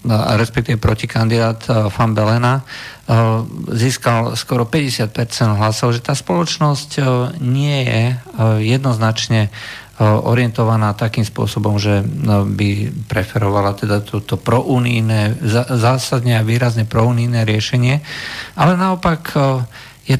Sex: male